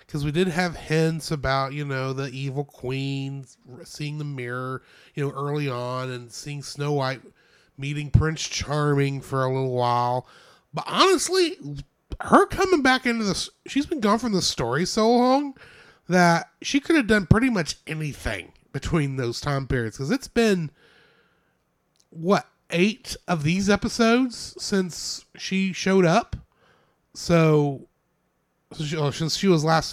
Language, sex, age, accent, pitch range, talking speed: English, male, 30-49, American, 140-190 Hz, 150 wpm